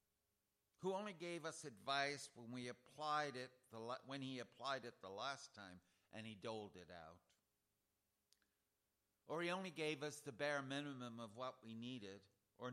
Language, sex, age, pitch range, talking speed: English, male, 60-79, 110-150 Hz, 170 wpm